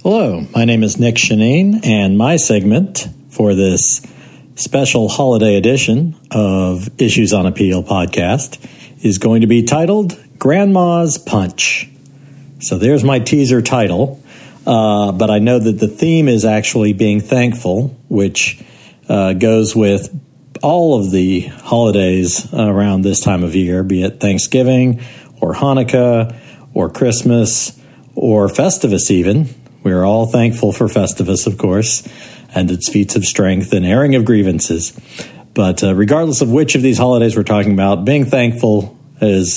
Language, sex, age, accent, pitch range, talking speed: English, male, 50-69, American, 100-130 Hz, 145 wpm